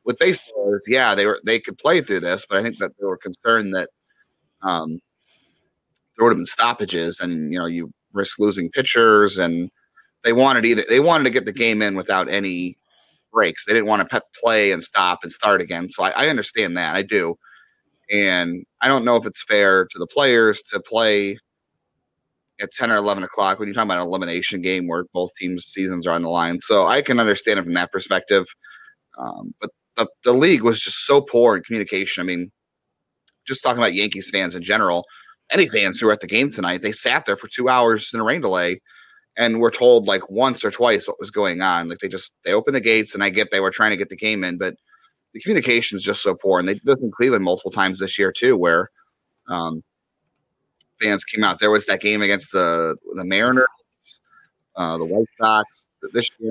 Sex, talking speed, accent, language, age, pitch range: male, 220 wpm, American, English, 30-49, 90-115 Hz